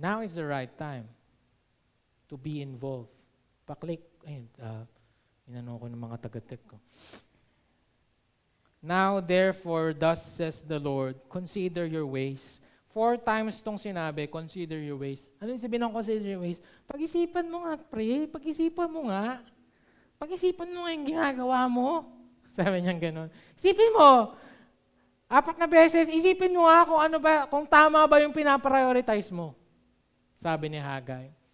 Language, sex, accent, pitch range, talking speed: Filipino, male, native, 165-270 Hz, 140 wpm